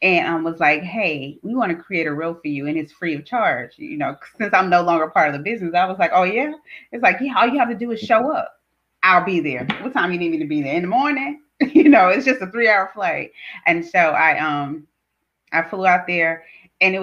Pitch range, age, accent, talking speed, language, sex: 155-205 Hz, 30-49, American, 270 wpm, English, female